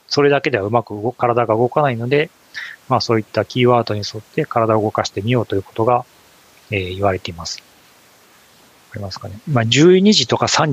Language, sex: Japanese, male